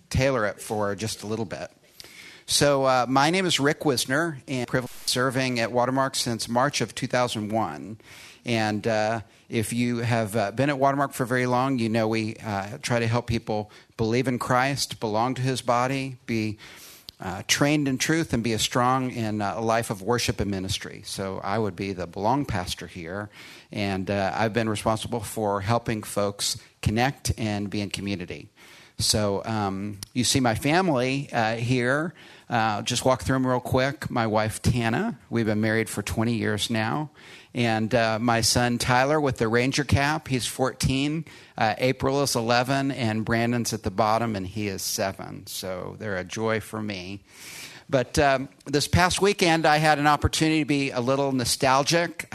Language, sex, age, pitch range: English, male, 40-59, 110-135 Hz